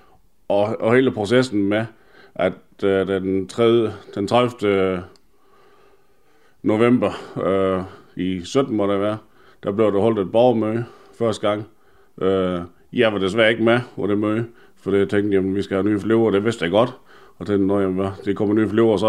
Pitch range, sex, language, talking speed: 100-115 Hz, male, Danish, 190 wpm